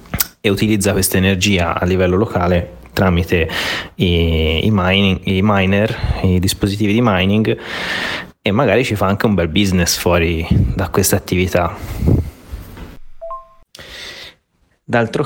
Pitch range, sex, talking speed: 90-105 Hz, male, 110 wpm